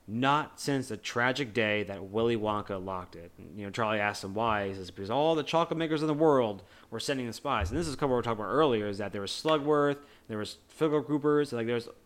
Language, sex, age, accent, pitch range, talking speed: English, male, 30-49, American, 105-135 Hz, 255 wpm